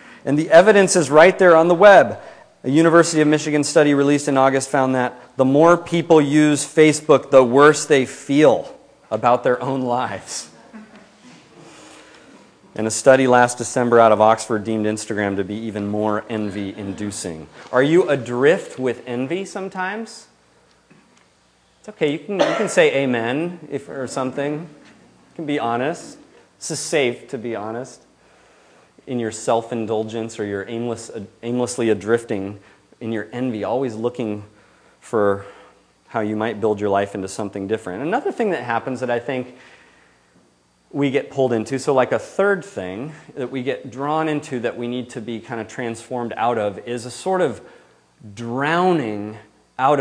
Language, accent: English, American